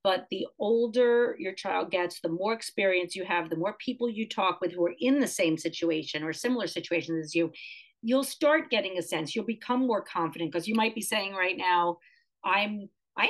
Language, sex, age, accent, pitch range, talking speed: English, female, 50-69, American, 170-225 Hz, 205 wpm